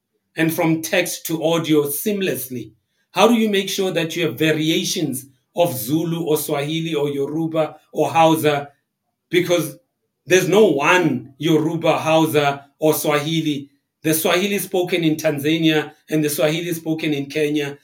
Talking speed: 140 wpm